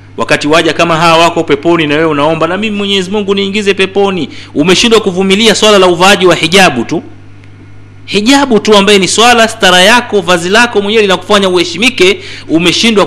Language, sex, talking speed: Swahili, male, 170 wpm